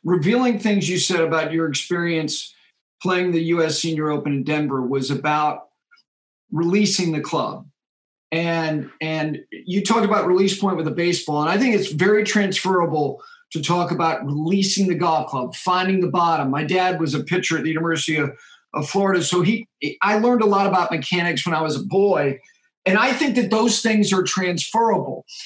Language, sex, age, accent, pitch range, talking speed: English, male, 50-69, American, 165-210 Hz, 180 wpm